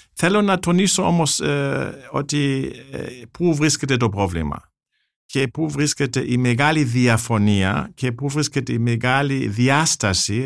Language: Greek